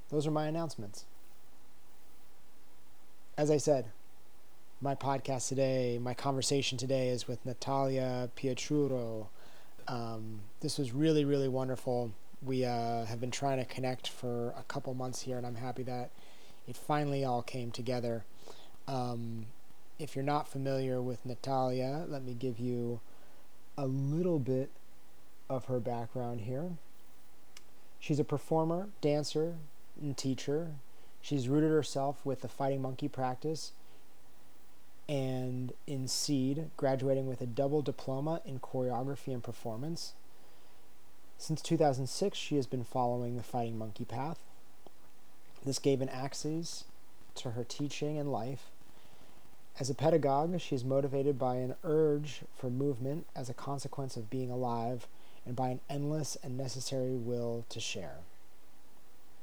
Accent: American